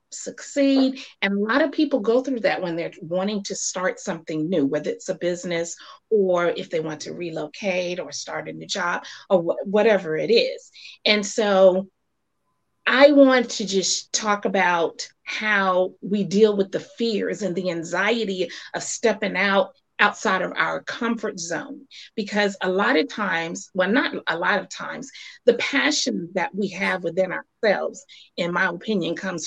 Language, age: English, 30-49